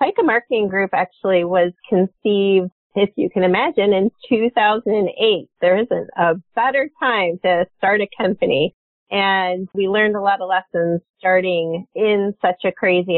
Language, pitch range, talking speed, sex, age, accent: English, 175-210 Hz, 150 wpm, female, 30-49, American